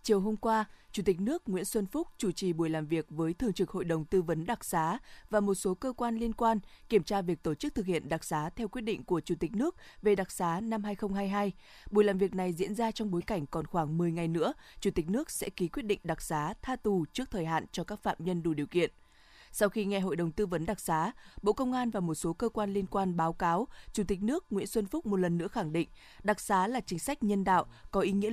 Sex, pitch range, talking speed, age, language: female, 175-220 Hz, 270 wpm, 20-39, Vietnamese